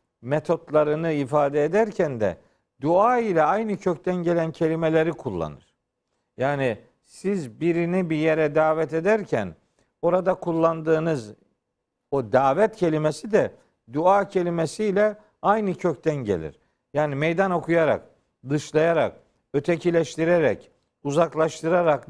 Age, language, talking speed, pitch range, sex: 50-69, Turkish, 95 wpm, 145-175 Hz, male